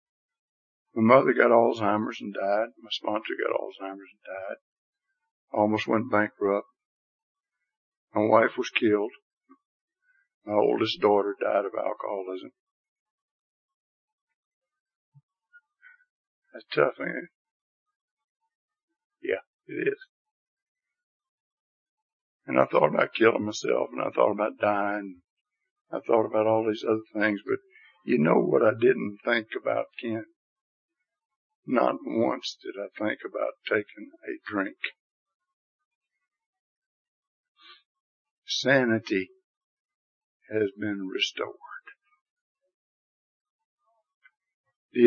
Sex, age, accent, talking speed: male, 60-79, American, 100 wpm